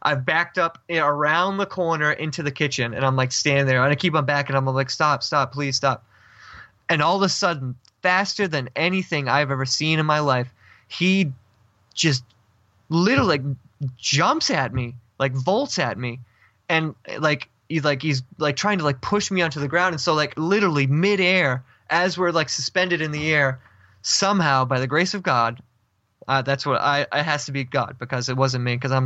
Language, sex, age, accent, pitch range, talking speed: English, male, 20-39, American, 130-175 Hz, 200 wpm